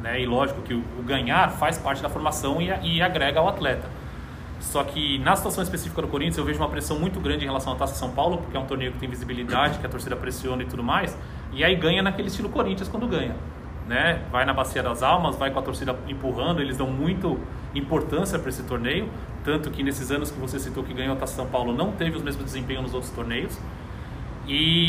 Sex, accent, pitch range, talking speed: male, Brazilian, 125-165 Hz, 235 wpm